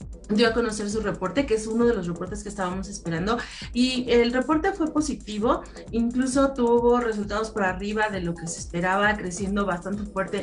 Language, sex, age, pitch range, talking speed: Spanish, female, 30-49, 185-230 Hz, 185 wpm